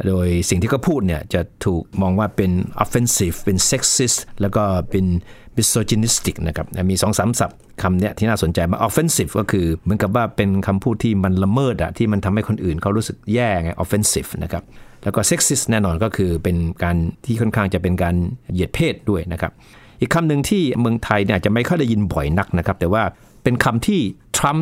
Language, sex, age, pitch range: Thai, male, 60-79, 90-115 Hz